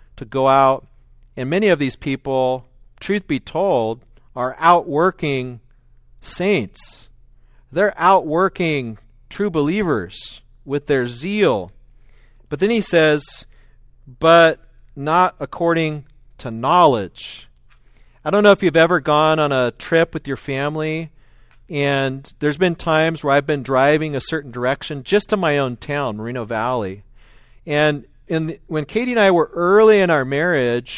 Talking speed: 140 wpm